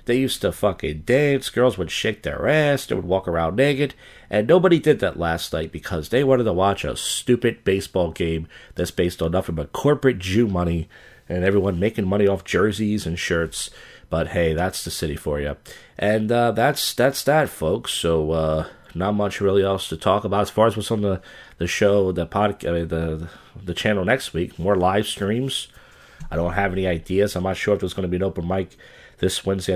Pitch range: 85-115 Hz